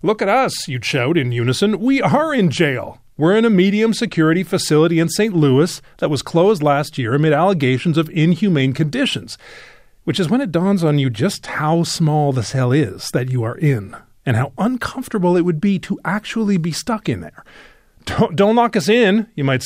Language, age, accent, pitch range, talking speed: English, 40-59, American, 130-190 Hz, 200 wpm